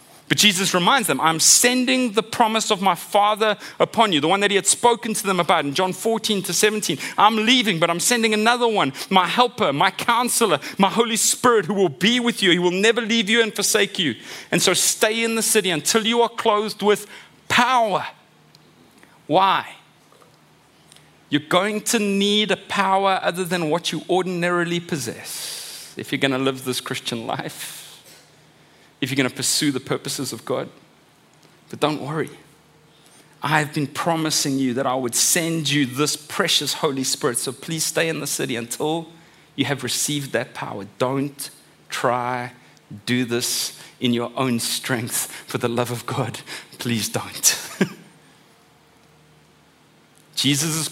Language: English